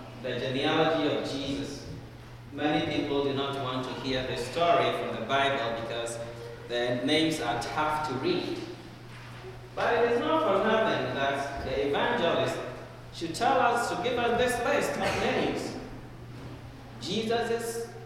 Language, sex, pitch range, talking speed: English, male, 120-170 Hz, 145 wpm